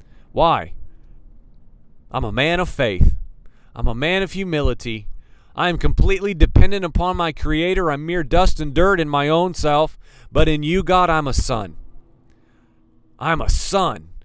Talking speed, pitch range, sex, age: 155 wpm, 115-180 Hz, male, 40-59